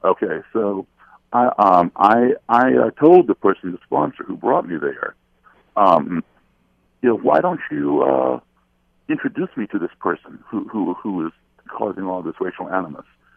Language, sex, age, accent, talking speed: English, male, 60-79, American, 160 wpm